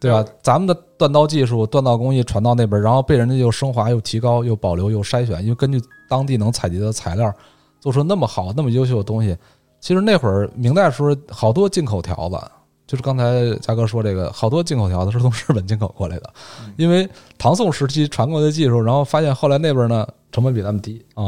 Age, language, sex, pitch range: 20-39, Chinese, male, 105-140 Hz